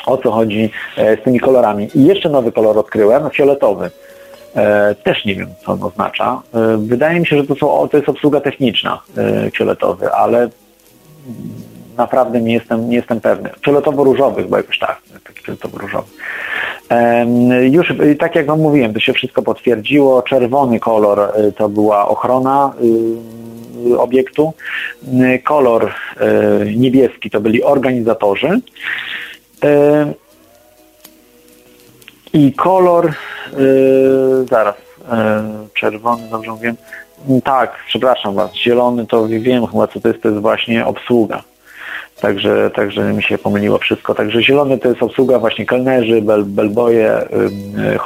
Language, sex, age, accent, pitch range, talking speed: Polish, male, 40-59, native, 110-135 Hz, 125 wpm